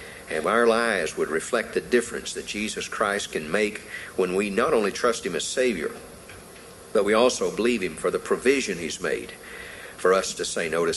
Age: 50-69